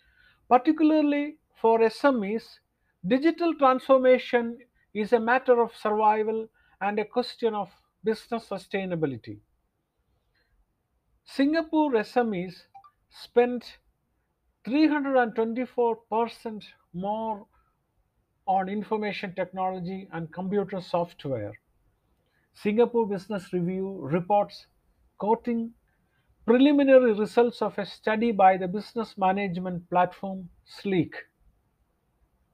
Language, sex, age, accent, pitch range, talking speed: English, male, 50-69, Indian, 190-245 Hz, 80 wpm